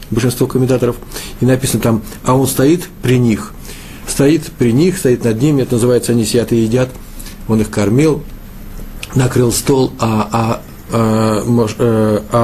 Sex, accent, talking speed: male, native, 150 wpm